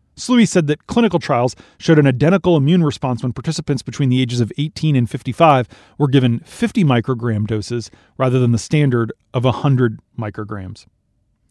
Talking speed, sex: 160 wpm, male